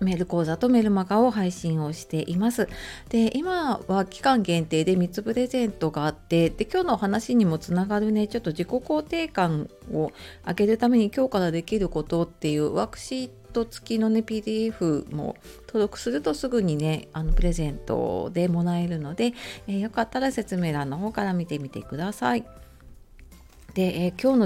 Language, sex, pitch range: Japanese, female, 155-215 Hz